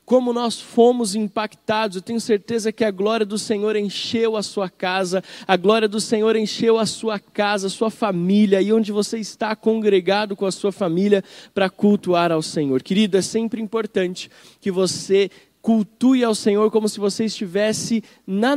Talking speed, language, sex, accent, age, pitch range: 175 wpm, Portuguese, male, Brazilian, 20-39, 165-205 Hz